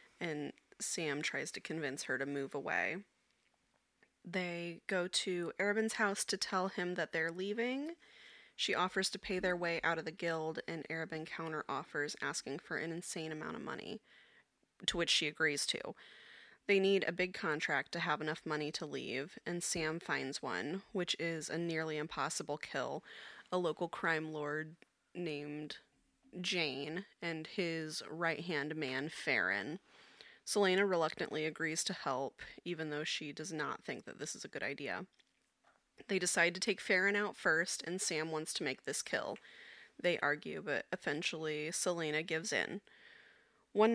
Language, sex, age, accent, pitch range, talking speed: English, female, 20-39, American, 155-185 Hz, 160 wpm